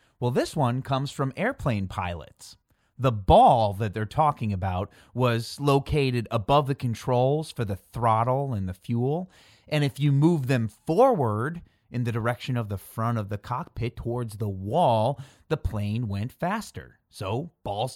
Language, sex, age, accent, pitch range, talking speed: English, male, 30-49, American, 115-155 Hz, 160 wpm